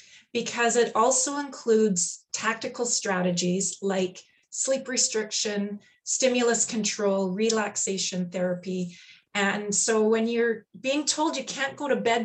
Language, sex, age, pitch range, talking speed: English, female, 30-49, 195-235 Hz, 120 wpm